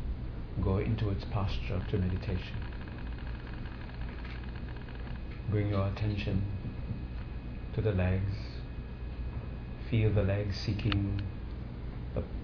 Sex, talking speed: male, 80 wpm